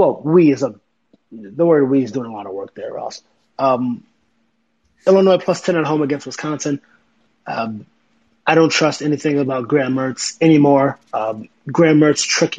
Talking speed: 175 wpm